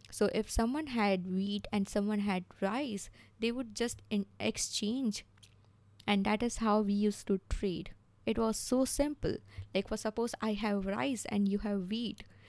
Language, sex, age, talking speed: English, female, 20-39, 170 wpm